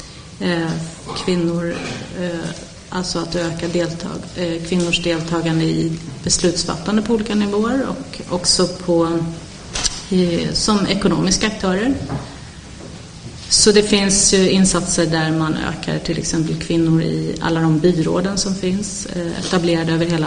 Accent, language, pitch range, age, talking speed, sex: native, Swedish, 165-185 Hz, 30-49, 110 wpm, female